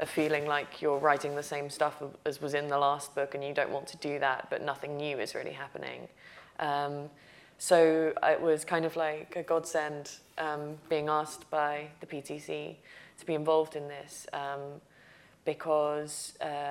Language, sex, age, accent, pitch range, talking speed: English, female, 20-39, British, 145-160 Hz, 175 wpm